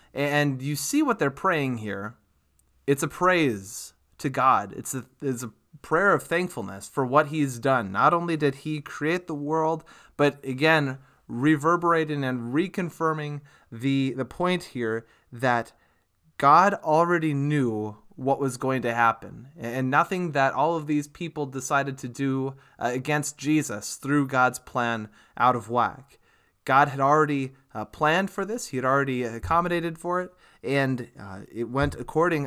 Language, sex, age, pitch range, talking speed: English, male, 20-39, 125-155 Hz, 155 wpm